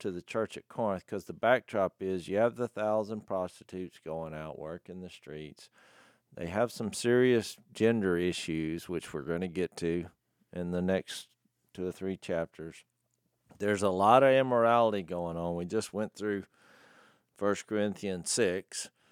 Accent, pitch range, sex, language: American, 90-115 Hz, male, English